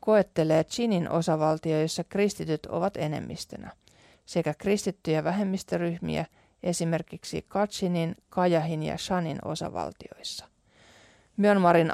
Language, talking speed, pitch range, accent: Finnish, 80 wpm, 155-195 Hz, native